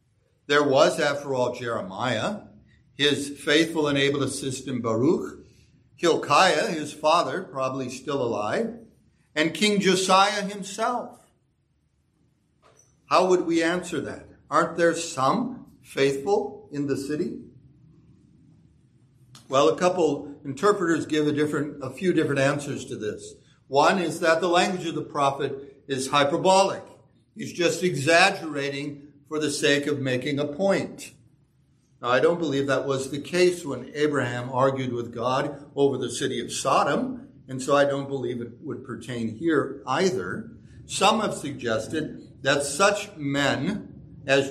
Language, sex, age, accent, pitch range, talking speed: English, male, 60-79, American, 135-170 Hz, 135 wpm